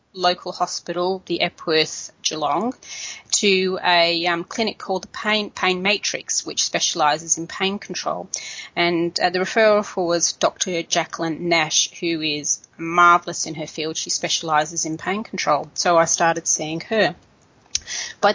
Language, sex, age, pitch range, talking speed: English, female, 30-49, 165-200 Hz, 145 wpm